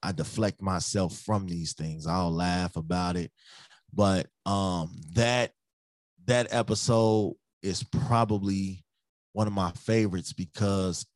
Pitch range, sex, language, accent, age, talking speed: 95-110 Hz, male, English, American, 20-39, 120 wpm